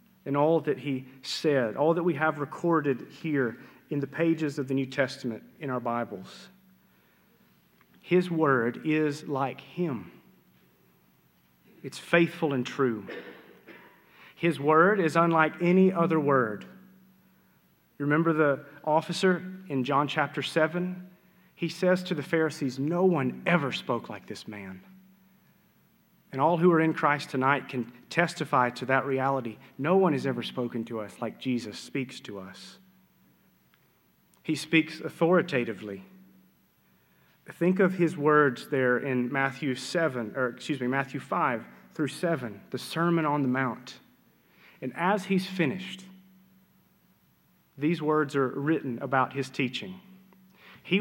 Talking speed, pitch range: 135 wpm, 130-175 Hz